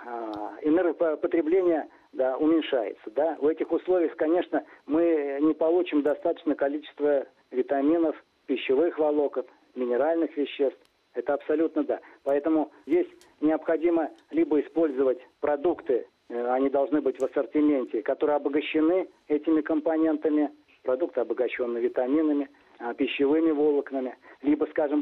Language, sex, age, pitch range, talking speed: Russian, male, 50-69, 145-175 Hz, 105 wpm